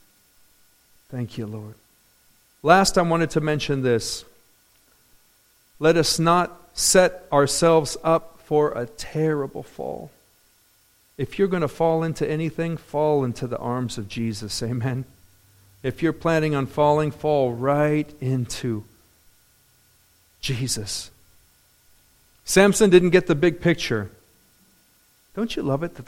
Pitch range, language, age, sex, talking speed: 130-175 Hz, English, 40-59, male, 120 wpm